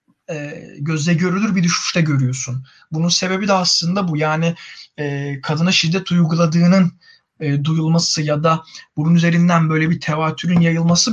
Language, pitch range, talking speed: Turkish, 150-180 Hz, 140 wpm